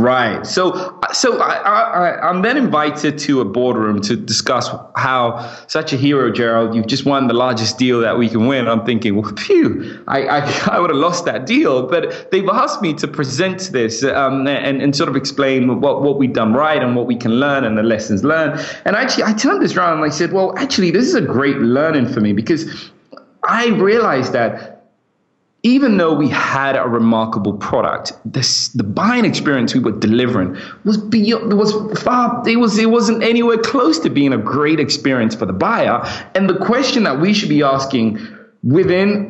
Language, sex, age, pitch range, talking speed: English, male, 20-39, 120-185 Hz, 200 wpm